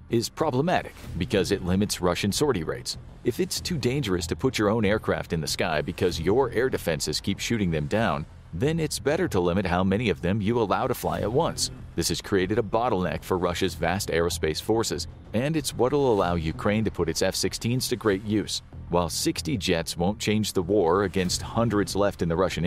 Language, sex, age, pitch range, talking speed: English, male, 40-59, 85-110 Hz, 205 wpm